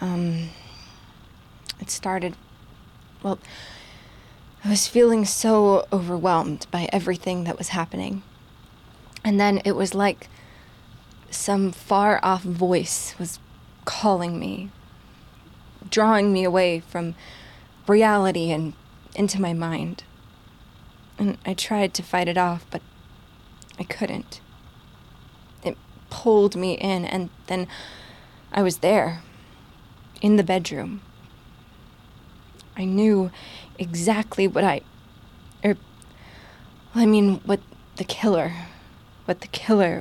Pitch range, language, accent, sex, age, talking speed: 170-200 Hz, English, American, female, 20-39, 105 wpm